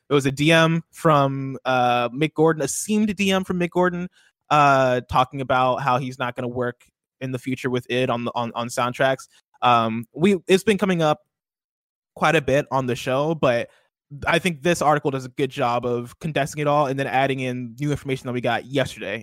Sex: male